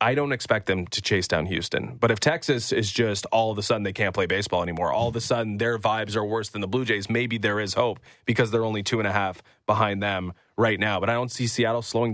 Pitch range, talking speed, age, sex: 100-120 Hz, 270 wpm, 20-39, male